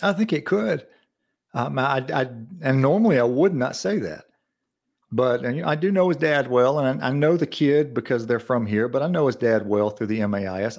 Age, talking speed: 40-59, 240 wpm